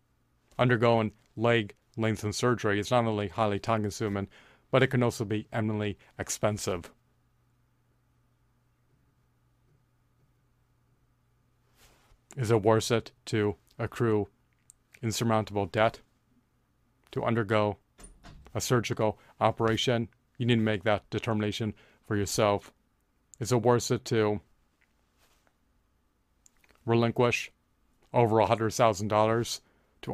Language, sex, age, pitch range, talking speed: English, male, 30-49, 105-120 Hz, 90 wpm